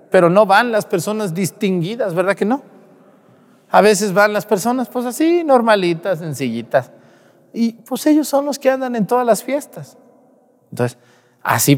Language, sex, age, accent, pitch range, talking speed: Spanish, male, 40-59, Mexican, 145-210 Hz, 160 wpm